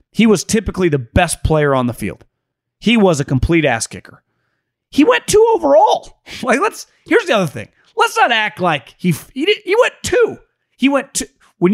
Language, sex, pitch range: English, male, 170-275 Hz